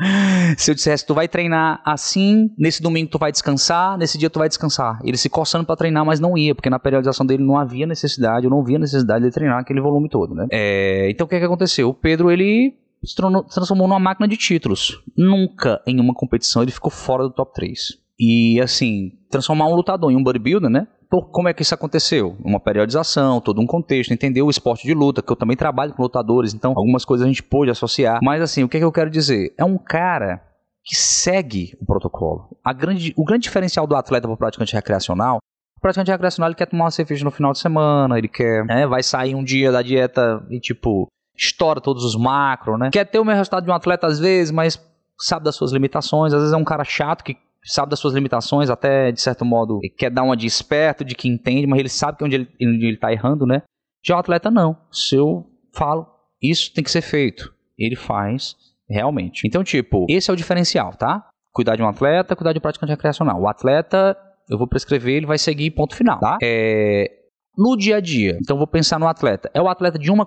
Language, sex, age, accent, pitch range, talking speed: Portuguese, male, 20-39, Brazilian, 125-165 Hz, 225 wpm